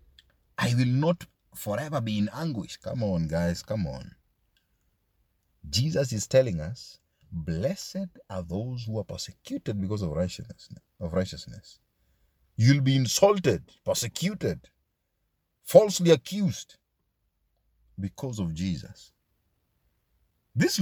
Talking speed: 105 wpm